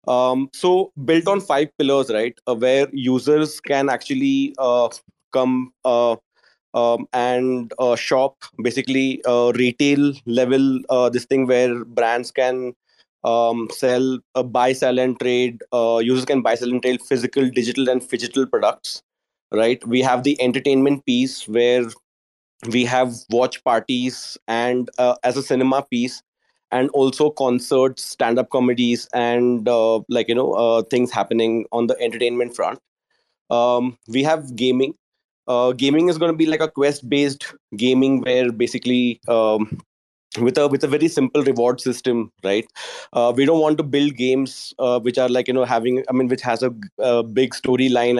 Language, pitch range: English, 120-140 Hz